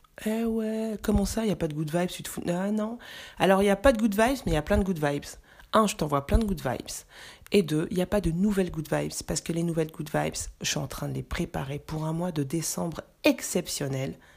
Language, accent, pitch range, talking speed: French, French, 145-195 Hz, 270 wpm